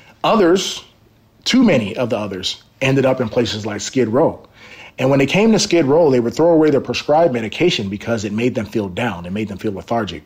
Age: 30-49